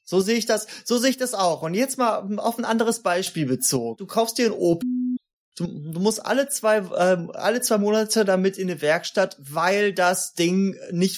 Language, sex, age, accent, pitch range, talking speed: German, male, 30-49, German, 135-210 Hz, 210 wpm